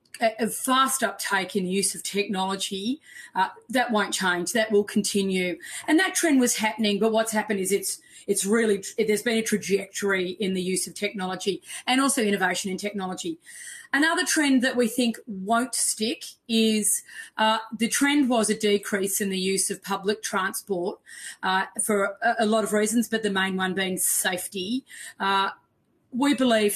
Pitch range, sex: 190-230 Hz, female